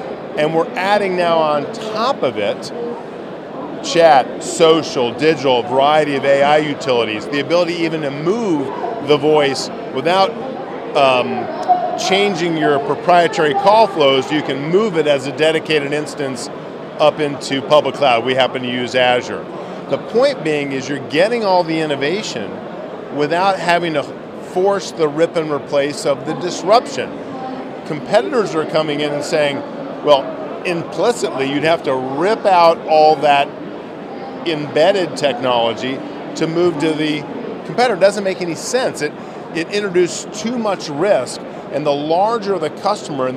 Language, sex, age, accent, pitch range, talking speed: English, male, 40-59, American, 145-180 Hz, 145 wpm